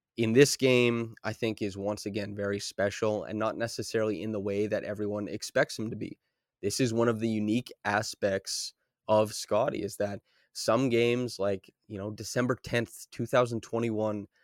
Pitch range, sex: 105-120 Hz, male